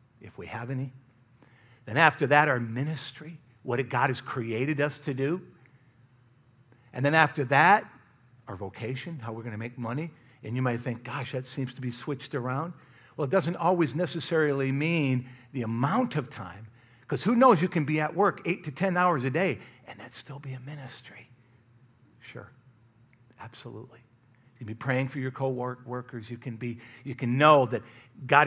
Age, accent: 50-69, American